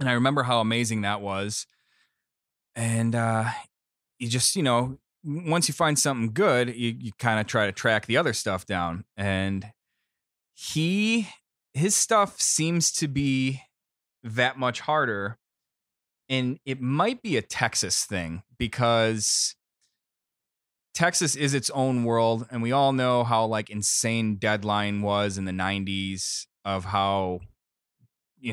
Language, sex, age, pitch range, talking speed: English, male, 20-39, 105-125 Hz, 140 wpm